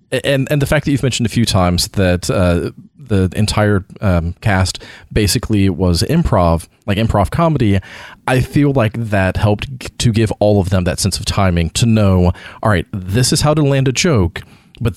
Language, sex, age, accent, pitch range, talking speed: English, male, 30-49, American, 95-125 Hz, 190 wpm